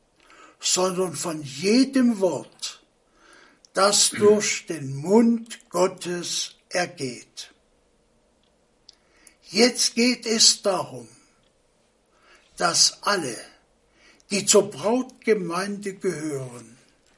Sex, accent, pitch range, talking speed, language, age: male, German, 170-220 Hz, 70 wpm, German, 60-79